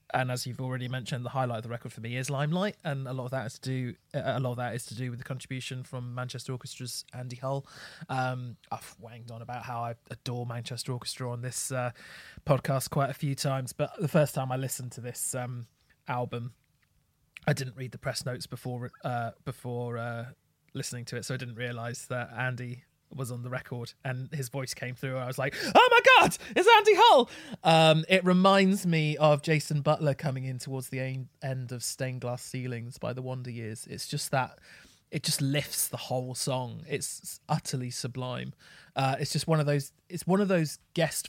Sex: male